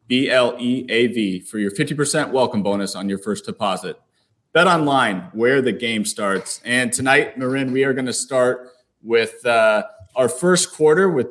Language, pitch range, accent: English, 120-140 Hz, American